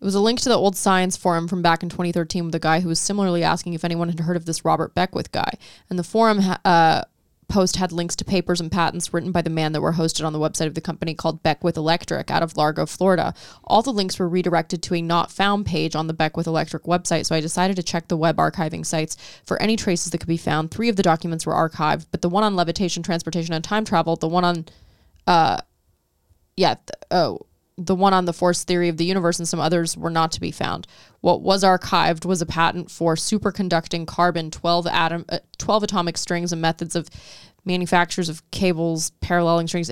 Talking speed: 230 wpm